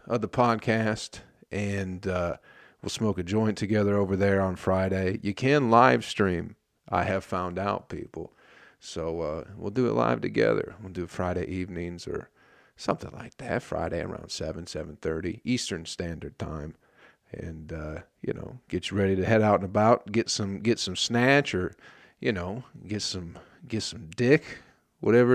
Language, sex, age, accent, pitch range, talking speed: English, male, 40-59, American, 95-120 Hz, 170 wpm